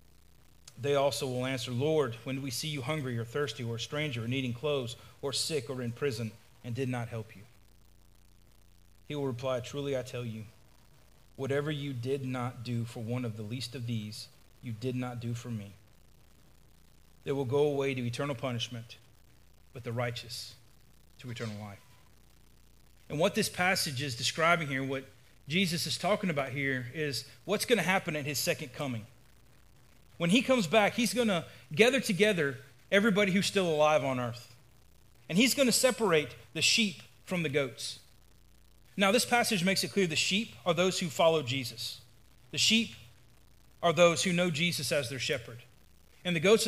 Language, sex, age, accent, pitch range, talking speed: English, male, 30-49, American, 120-170 Hz, 180 wpm